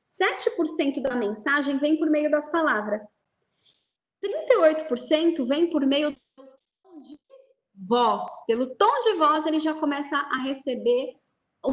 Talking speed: 130 wpm